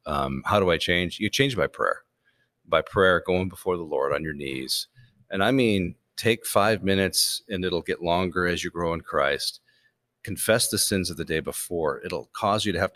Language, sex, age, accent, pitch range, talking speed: English, male, 40-59, American, 85-105 Hz, 210 wpm